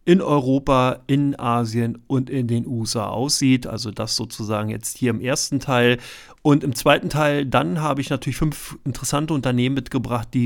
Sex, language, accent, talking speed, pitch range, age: male, German, German, 170 wpm, 115-140 Hz, 30-49